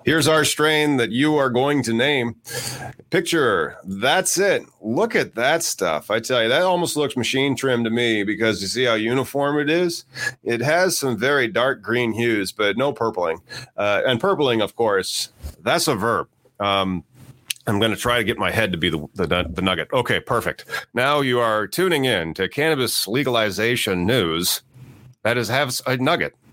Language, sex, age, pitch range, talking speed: English, male, 40-59, 110-145 Hz, 185 wpm